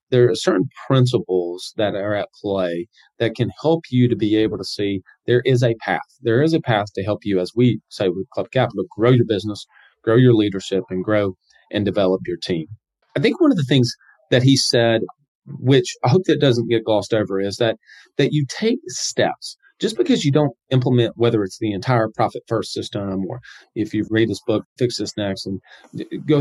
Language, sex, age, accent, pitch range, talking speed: English, male, 40-59, American, 105-130 Hz, 210 wpm